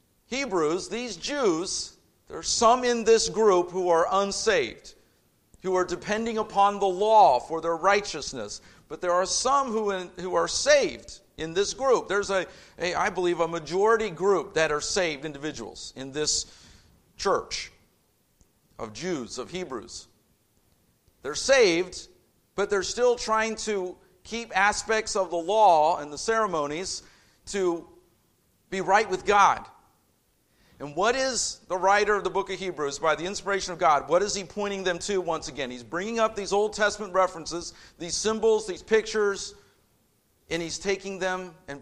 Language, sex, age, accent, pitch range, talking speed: English, male, 50-69, American, 160-210 Hz, 160 wpm